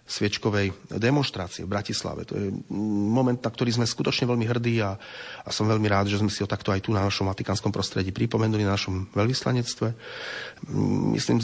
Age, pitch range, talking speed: 30-49, 100-120 Hz, 180 wpm